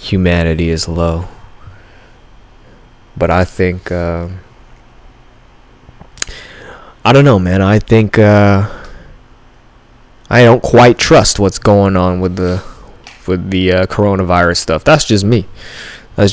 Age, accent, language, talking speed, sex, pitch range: 20-39, American, English, 120 wpm, male, 90-120 Hz